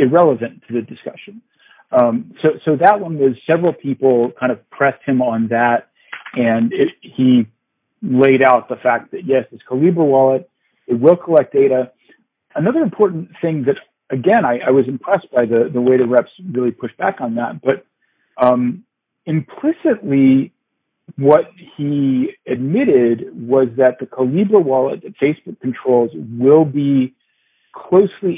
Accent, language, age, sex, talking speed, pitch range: American, English, 50-69, male, 150 wpm, 120-170 Hz